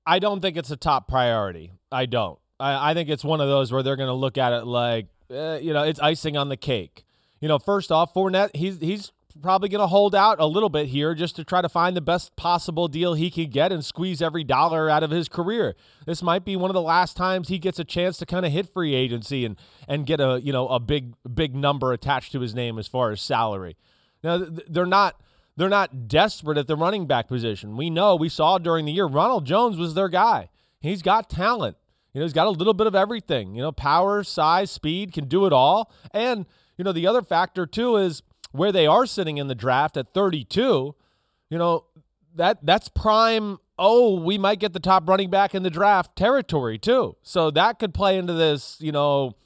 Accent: American